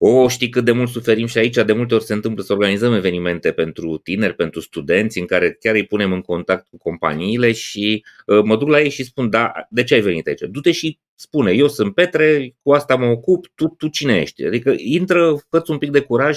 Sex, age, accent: male, 30-49, native